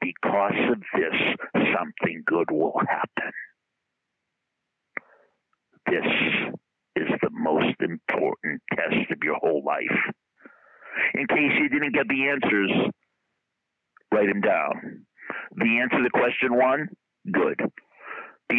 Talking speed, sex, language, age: 110 wpm, male, English, 60-79